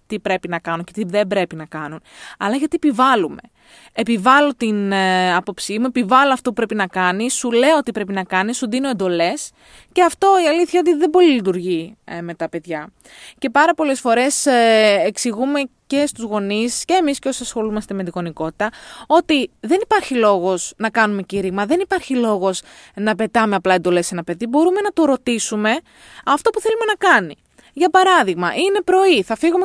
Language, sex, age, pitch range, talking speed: Greek, female, 20-39, 200-330 Hz, 190 wpm